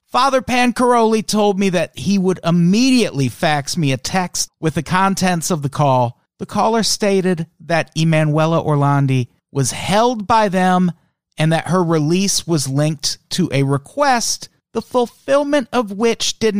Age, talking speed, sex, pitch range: 40-59, 150 wpm, male, 130-185 Hz